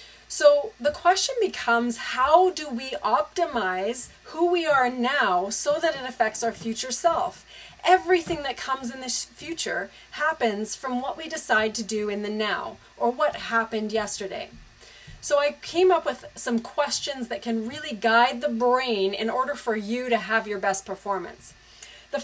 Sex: female